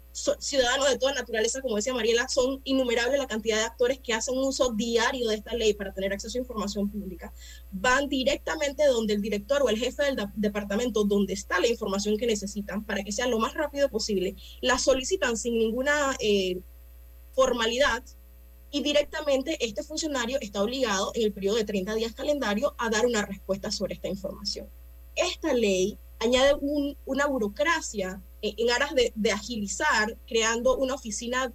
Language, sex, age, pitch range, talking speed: Spanish, female, 20-39, 205-270 Hz, 170 wpm